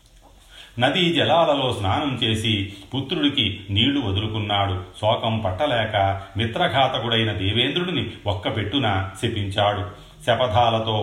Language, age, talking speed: Telugu, 40-59, 80 wpm